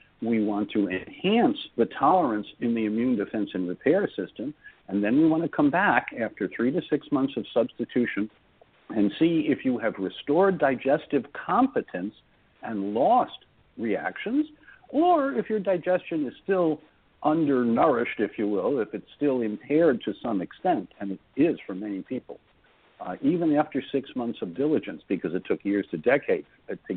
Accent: American